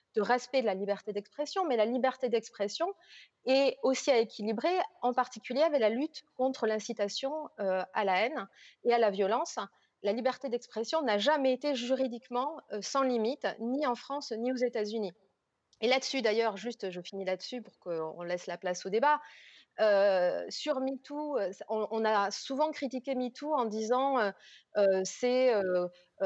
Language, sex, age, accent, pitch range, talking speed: French, female, 30-49, French, 210-270 Hz, 165 wpm